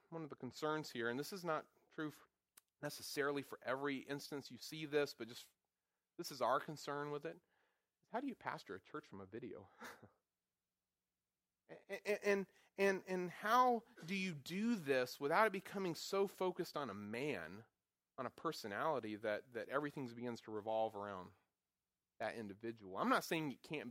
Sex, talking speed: male, 175 wpm